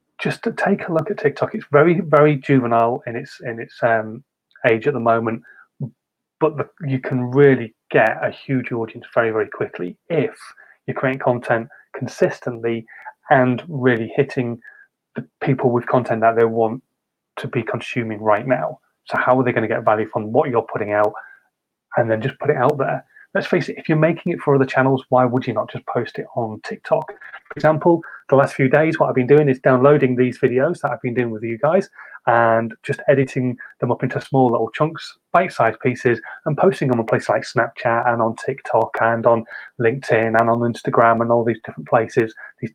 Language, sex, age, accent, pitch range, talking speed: English, male, 30-49, British, 115-145 Hz, 205 wpm